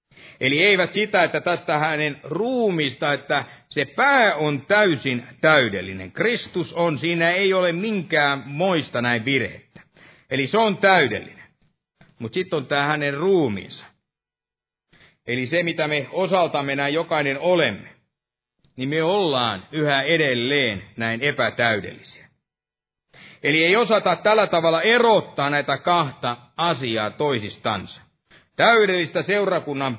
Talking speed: 120 wpm